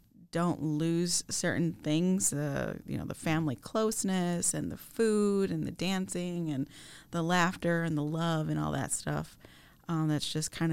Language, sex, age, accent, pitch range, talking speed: English, female, 30-49, American, 155-180 Hz, 170 wpm